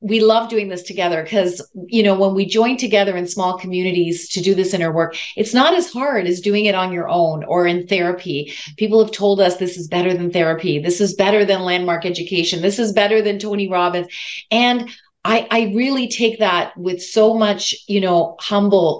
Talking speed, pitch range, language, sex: 210 wpm, 180-215 Hz, English, female